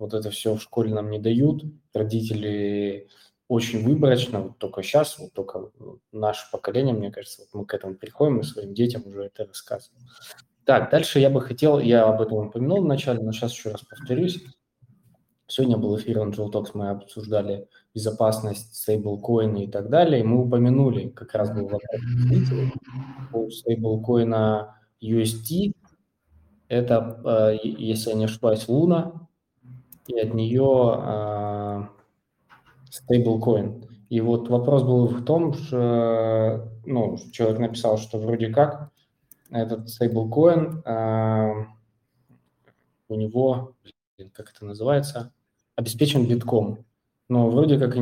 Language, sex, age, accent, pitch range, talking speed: Russian, male, 20-39, native, 110-125 Hz, 130 wpm